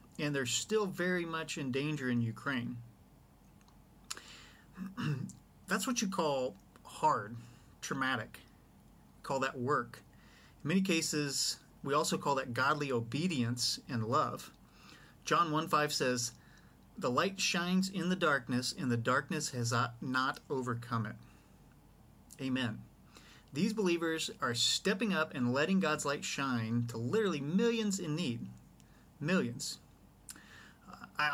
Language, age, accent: English, 40-59, American